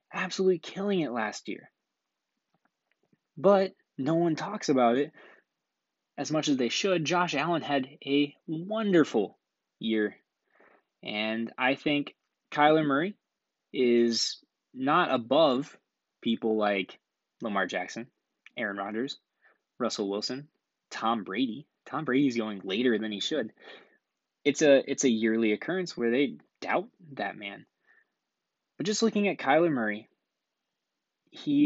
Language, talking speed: English, 120 wpm